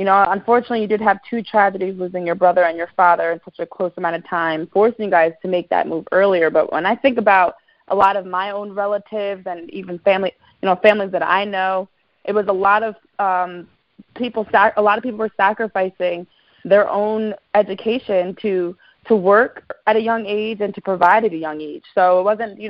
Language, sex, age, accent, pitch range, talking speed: English, female, 20-39, American, 180-215 Hz, 220 wpm